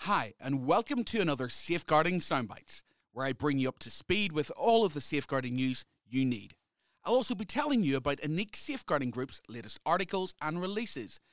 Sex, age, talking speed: male, 30-49, 185 wpm